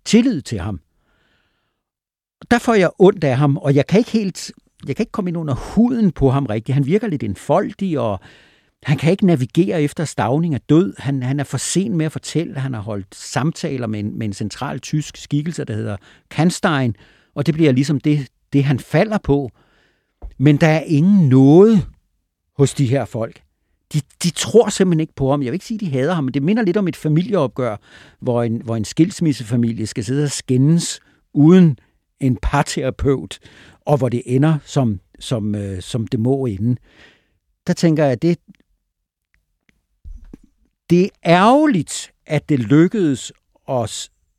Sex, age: male, 60-79